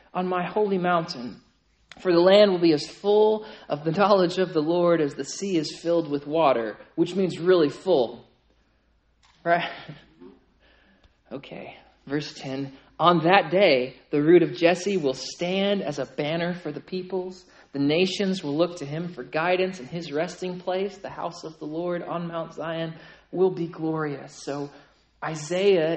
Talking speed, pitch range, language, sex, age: 165 wpm, 155-200 Hz, English, male, 40-59